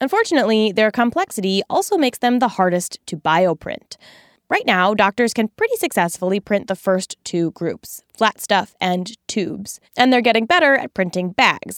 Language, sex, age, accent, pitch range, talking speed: English, female, 20-39, American, 180-250 Hz, 165 wpm